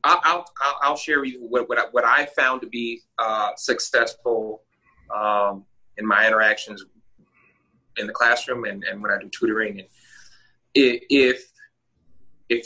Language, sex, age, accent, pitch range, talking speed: English, male, 30-49, American, 110-175 Hz, 150 wpm